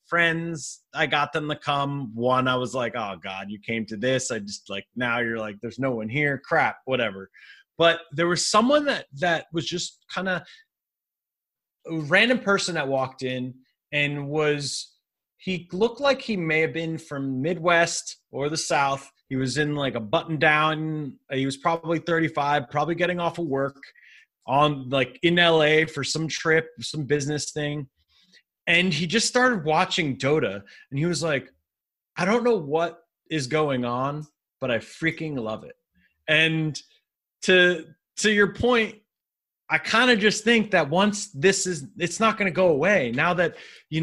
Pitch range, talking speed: 135-175 Hz, 175 wpm